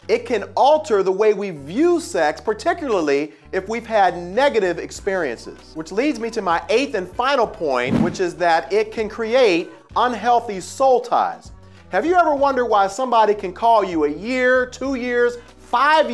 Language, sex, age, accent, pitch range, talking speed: English, male, 40-59, American, 190-285 Hz, 170 wpm